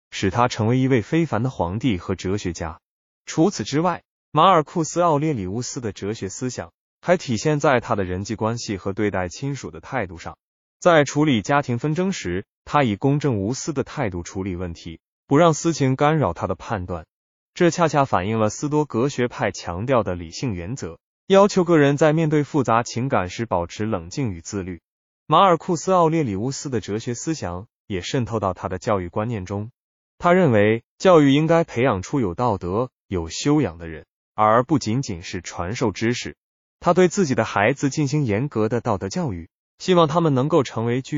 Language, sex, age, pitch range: Chinese, male, 20-39, 100-150 Hz